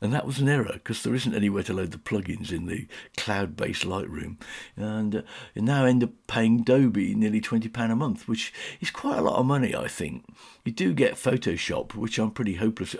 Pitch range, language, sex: 105-130 Hz, English, male